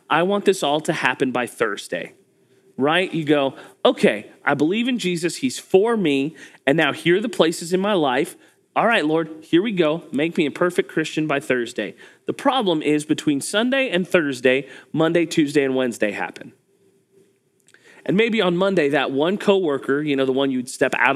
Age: 30-49